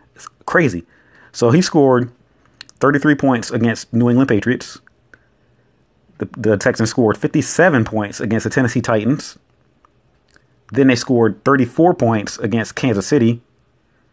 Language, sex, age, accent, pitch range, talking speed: English, male, 30-49, American, 110-135 Hz, 120 wpm